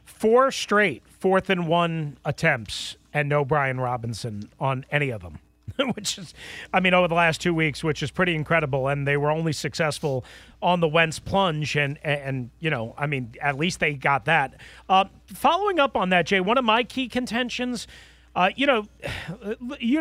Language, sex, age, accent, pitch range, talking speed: English, male, 40-59, American, 150-205 Hz, 185 wpm